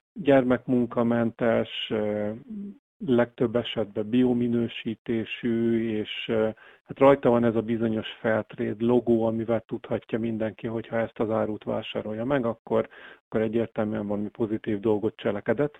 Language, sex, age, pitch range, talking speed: Hungarian, male, 40-59, 110-125 Hz, 115 wpm